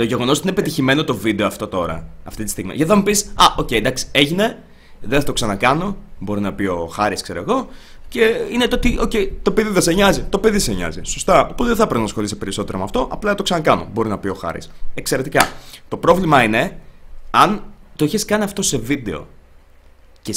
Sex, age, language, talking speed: male, 20-39, Greek, 220 wpm